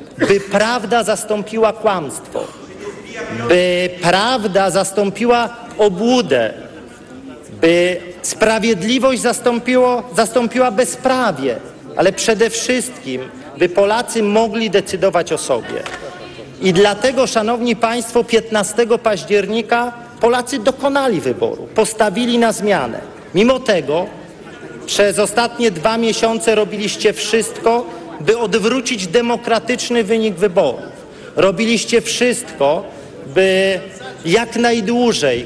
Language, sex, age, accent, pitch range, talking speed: Polish, male, 40-59, native, 195-235 Hz, 85 wpm